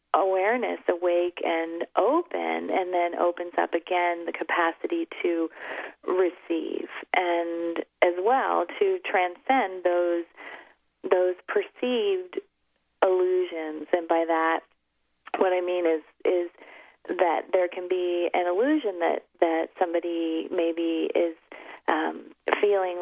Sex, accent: female, American